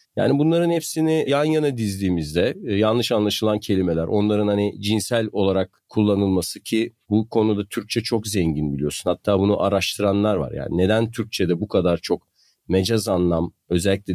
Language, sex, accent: Turkish, male, native